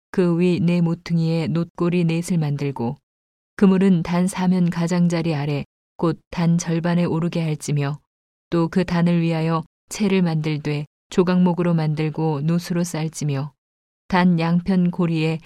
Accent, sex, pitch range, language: native, female, 160-180 Hz, Korean